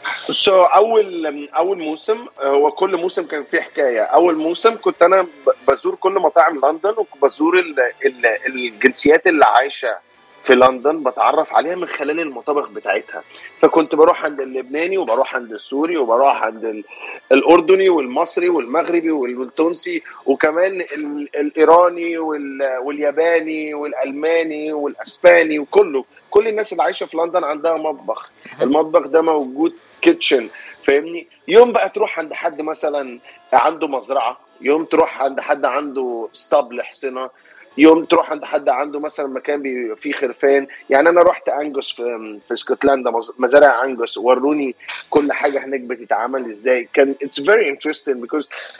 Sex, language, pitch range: male, Arabic, 140-180 Hz